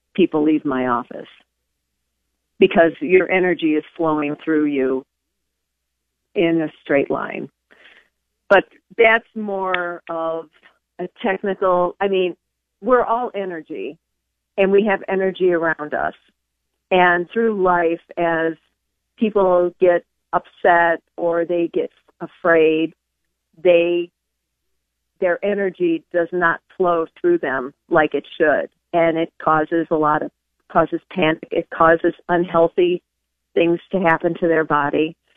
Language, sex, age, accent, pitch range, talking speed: English, female, 50-69, American, 155-185 Hz, 120 wpm